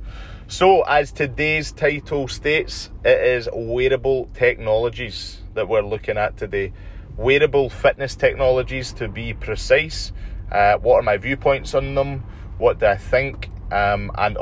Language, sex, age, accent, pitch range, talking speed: English, male, 20-39, British, 100-115 Hz, 135 wpm